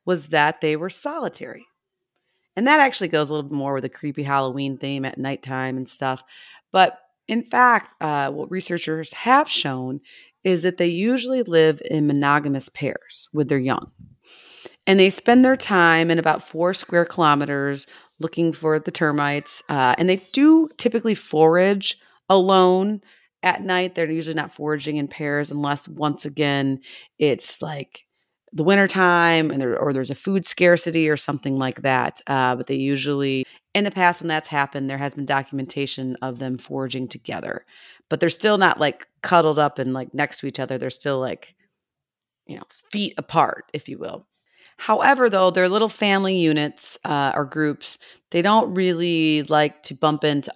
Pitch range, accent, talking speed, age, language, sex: 140-180 Hz, American, 170 wpm, 30-49, English, female